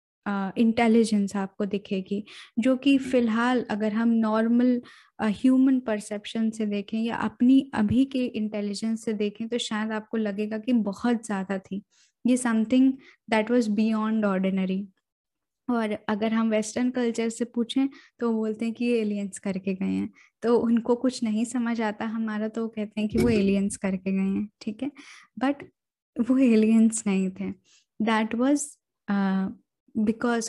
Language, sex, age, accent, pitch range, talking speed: Hindi, female, 10-29, native, 205-245 Hz, 155 wpm